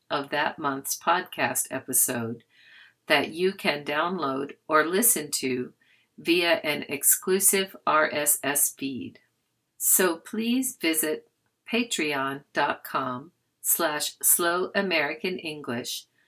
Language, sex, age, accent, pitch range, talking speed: English, female, 50-69, American, 140-180 Hz, 85 wpm